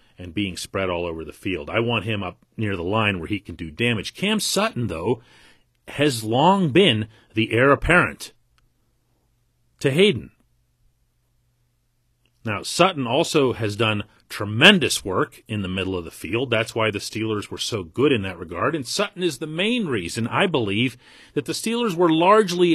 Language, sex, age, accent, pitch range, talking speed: English, male, 40-59, American, 110-135 Hz, 175 wpm